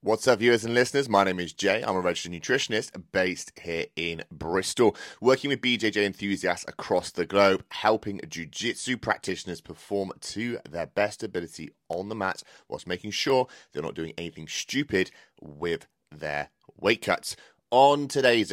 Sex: male